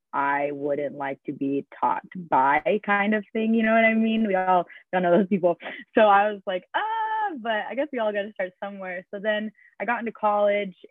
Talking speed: 225 wpm